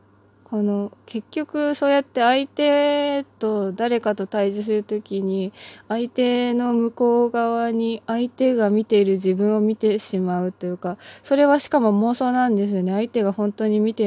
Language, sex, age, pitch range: Japanese, female, 20-39, 180-240 Hz